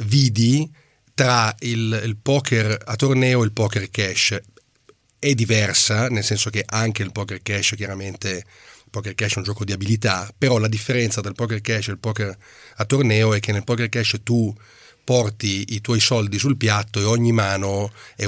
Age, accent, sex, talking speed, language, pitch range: 40-59, native, male, 185 wpm, Italian, 105-125 Hz